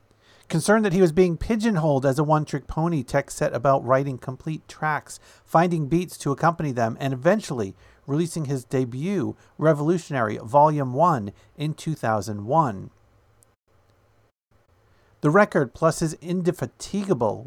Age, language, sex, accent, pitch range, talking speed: 50-69, English, male, American, 110-170 Hz, 125 wpm